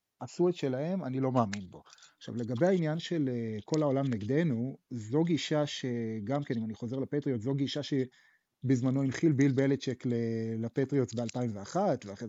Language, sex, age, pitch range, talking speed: English, male, 30-49, 120-160 Hz, 155 wpm